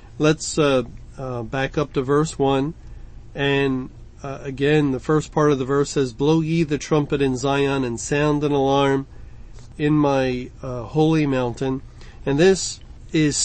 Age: 40-59